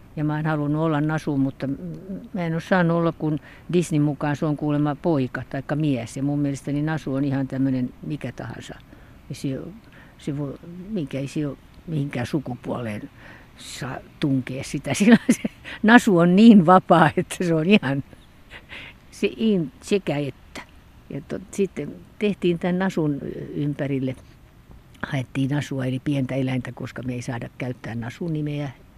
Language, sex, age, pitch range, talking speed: Finnish, female, 60-79, 130-170 Hz, 145 wpm